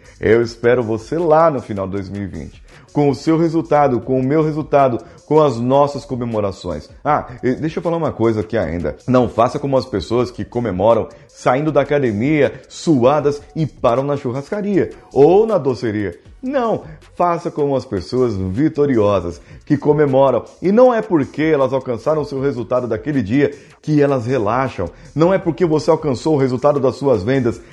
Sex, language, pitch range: male, Portuguese, 110-155 Hz